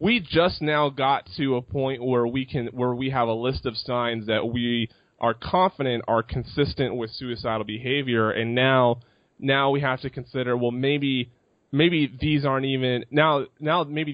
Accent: American